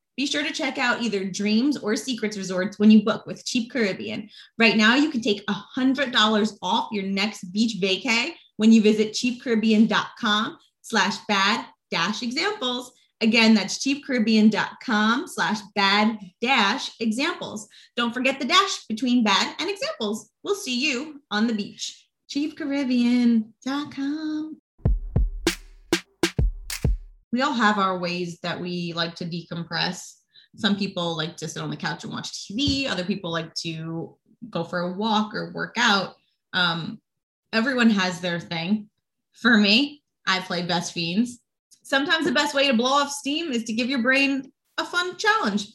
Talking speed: 145 wpm